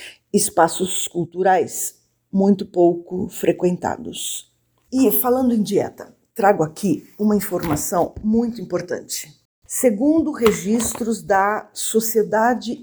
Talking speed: 90 wpm